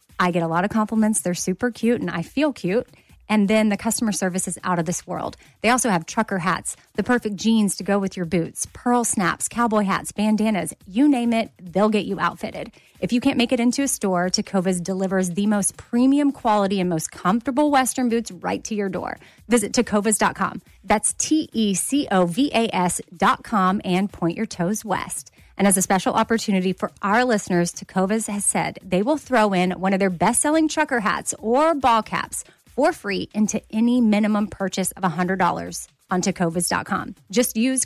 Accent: American